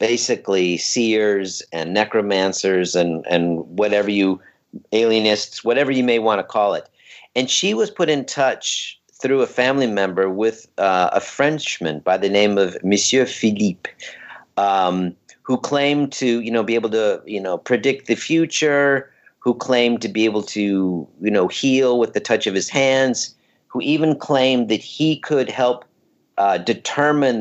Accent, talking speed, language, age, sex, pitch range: American, 160 wpm, English, 50-69, male, 100-135 Hz